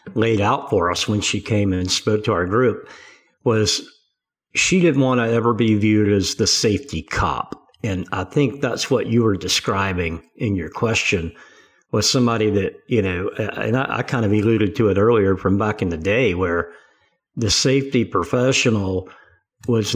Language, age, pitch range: English, 50-69, 95-115 Hz